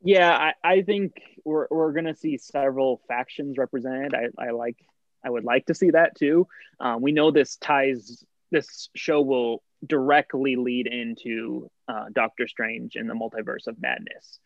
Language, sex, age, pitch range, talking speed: English, male, 20-39, 125-160 Hz, 170 wpm